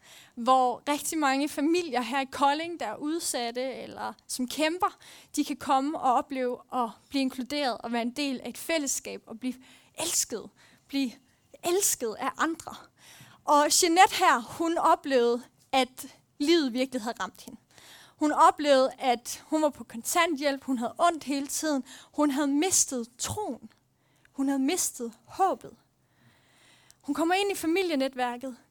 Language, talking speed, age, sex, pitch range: Danish, 145 wpm, 30-49, female, 255-320 Hz